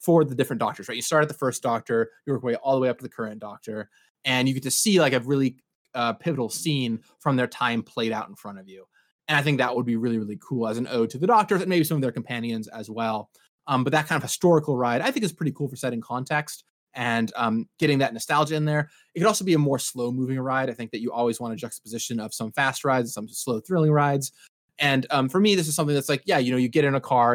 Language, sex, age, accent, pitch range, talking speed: English, male, 20-39, American, 115-145 Hz, 285 wpm